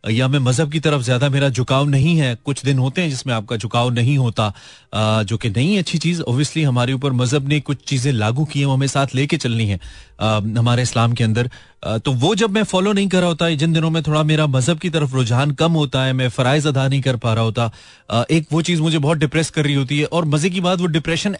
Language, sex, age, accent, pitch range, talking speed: Hindi, male, 30-49, native, 125-160 Hz, 245 wpm